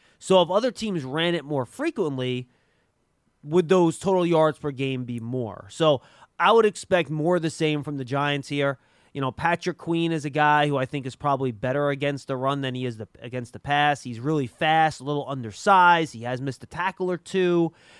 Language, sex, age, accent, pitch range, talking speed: English, male, 20-39, American, 140-175 Hz, 210 wpm